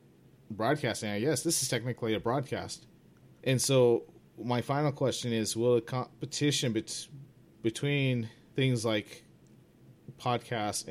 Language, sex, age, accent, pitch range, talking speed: English, male, 30-49, American, 105-130 Hz, 110 wpm